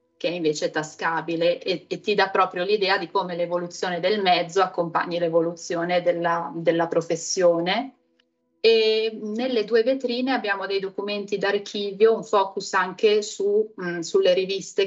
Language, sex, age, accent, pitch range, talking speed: Italian, female, 30-49, native, 170-200 Hz, 145 wpm